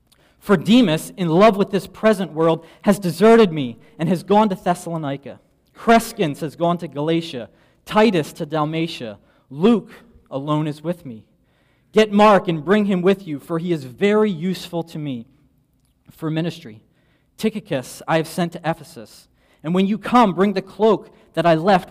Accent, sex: American, male